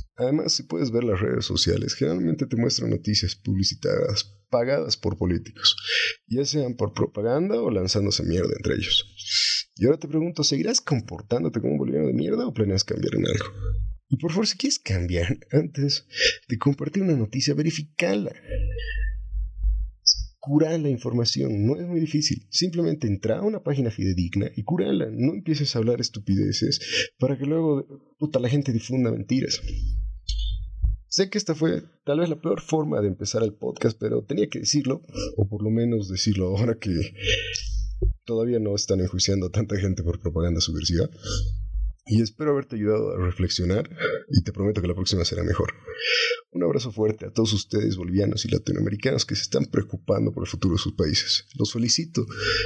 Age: 30-49